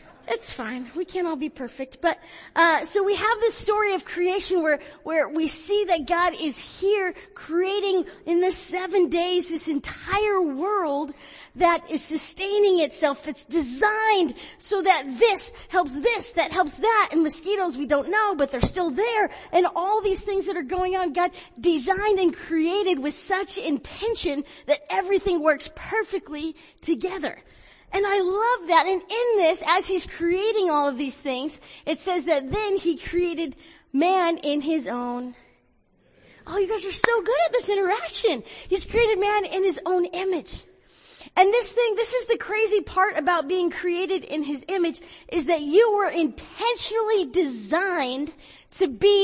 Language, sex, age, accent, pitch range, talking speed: English, female, 40-59, American, 310-390 Hz, 165 wpm